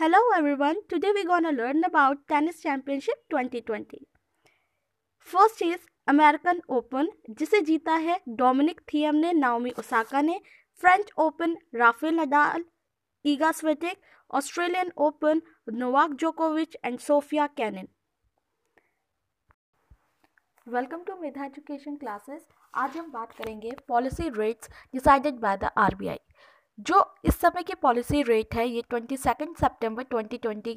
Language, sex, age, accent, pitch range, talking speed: Hindi, female, 20-39, native, 245-315 Hz, 125 wpm